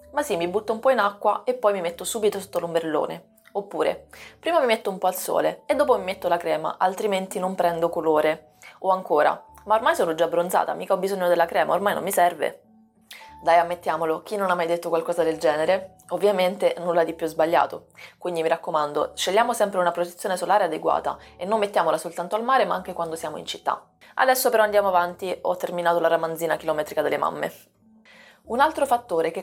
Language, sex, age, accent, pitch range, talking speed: Italian, female, 20-39, native, 170-210 Hz, 205 wpm